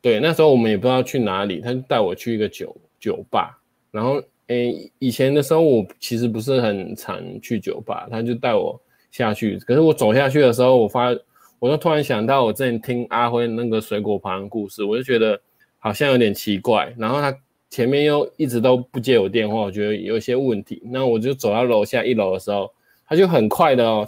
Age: 20-39